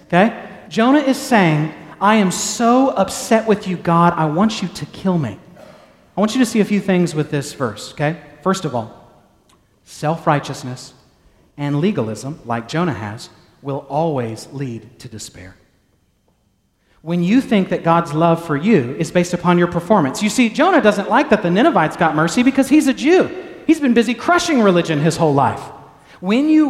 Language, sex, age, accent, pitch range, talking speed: English, male, 40-59, American, 150-215 Hz, 180 wpm